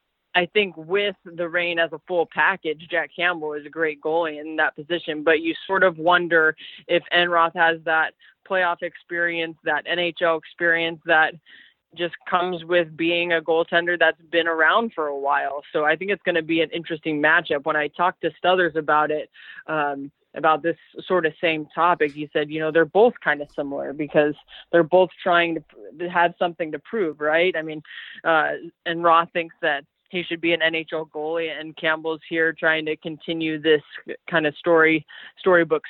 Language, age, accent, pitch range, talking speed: English, 20-39, American, 155-175 Hz, 185 wpm